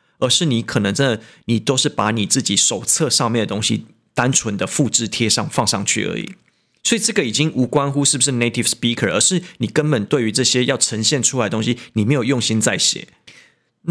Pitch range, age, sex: 110-145 Hz, 20-39, male